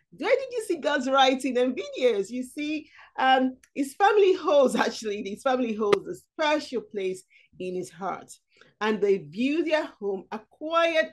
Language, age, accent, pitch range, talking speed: English, 40-59, Nigerian, 185-260 Hz, 160 wpm